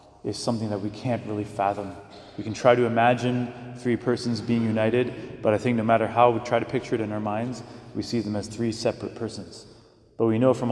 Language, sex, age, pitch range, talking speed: English, male, 30-49, 105-120 Hz, 230 wpm